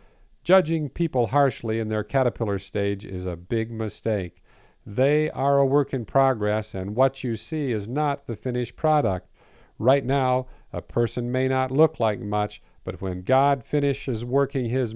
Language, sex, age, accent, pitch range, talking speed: English, male, 50-69, American, 110-140 Hz, 165 wpm